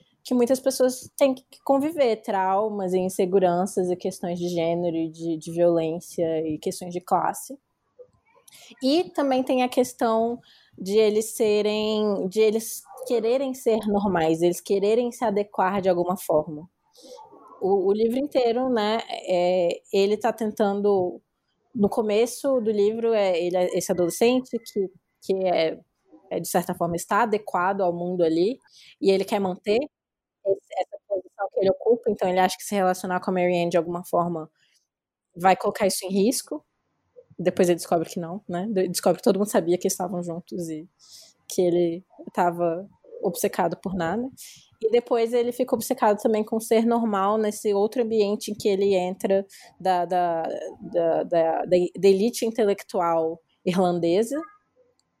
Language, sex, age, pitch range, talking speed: Portuguese, female, 20-39, 180-235 Hz, 155 wpm